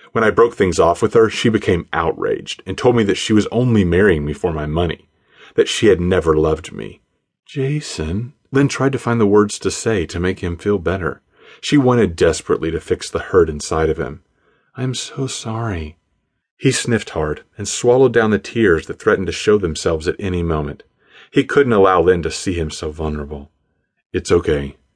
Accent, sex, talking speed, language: American, male, 195 wpm, English